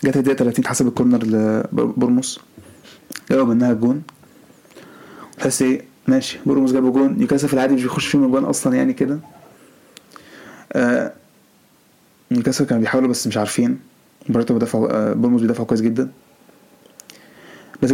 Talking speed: 125 wpm